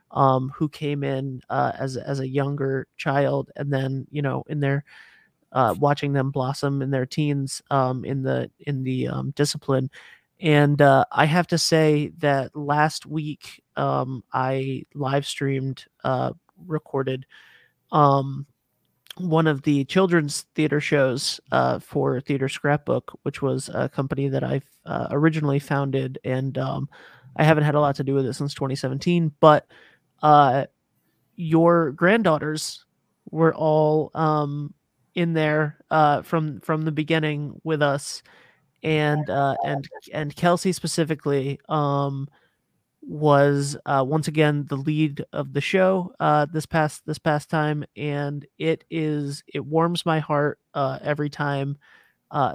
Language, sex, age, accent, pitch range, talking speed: English, male, 30-49, American, 135-155 Hz, 145 wpm